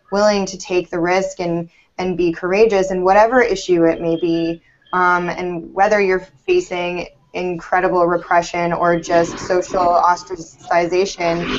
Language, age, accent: English, 10-29, American